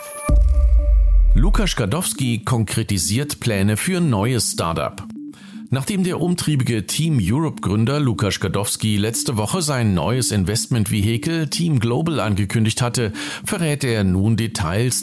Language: German